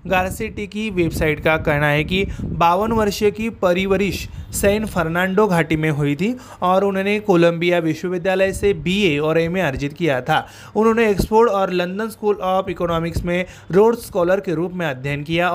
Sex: male